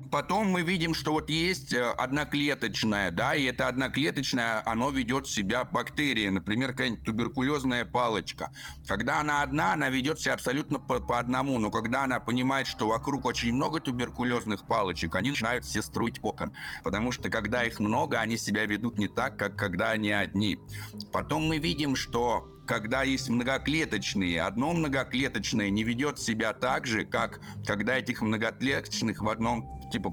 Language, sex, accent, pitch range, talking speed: Russian, male, native, 110-140 Hz, 155 wpm